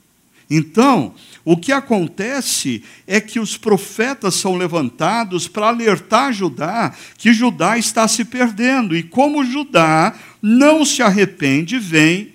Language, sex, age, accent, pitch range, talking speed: Portuguese, male, 60-79, Brazilian, 170-225 Hz, 120 wpm